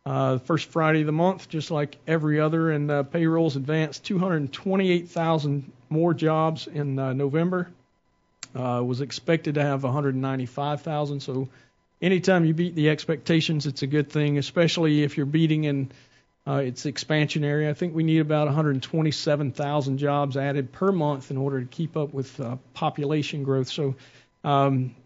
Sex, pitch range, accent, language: male, 140-170 Hz, American, English